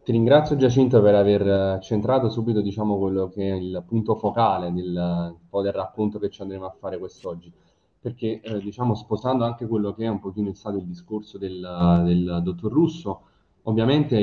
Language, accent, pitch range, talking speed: Italian, native, 95-110 Hz, 170 wpm